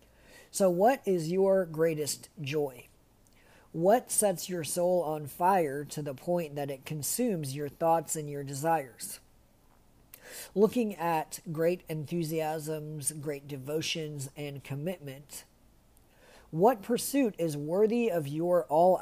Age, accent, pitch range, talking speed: 40-59, American, 145-180 Hz, 120 wpm